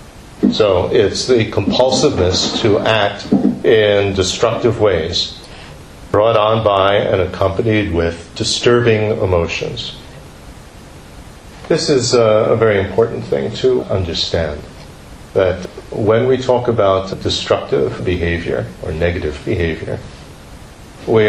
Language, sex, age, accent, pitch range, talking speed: English, male, 50-69, American, 90-110 Hz, 100 wpm